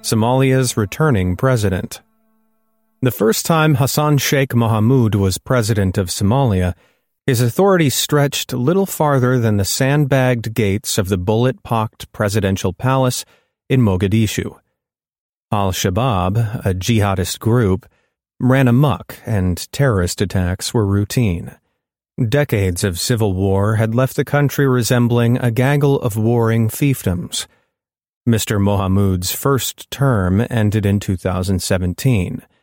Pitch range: 100-135 Hz